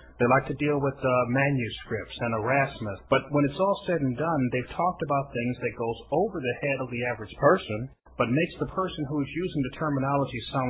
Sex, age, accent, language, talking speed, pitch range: male, 40-59, American, English, 220 wpm, 110-145 Hz